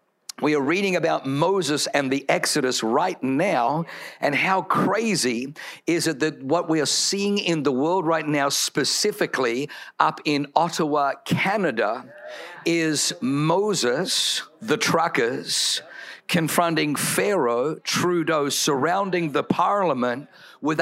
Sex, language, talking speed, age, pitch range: male, English, 120 wpm, 50-69, 150-185 Hz